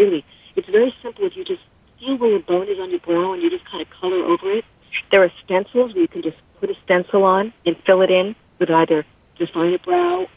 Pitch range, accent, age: 170-250 Hz, American, 50-69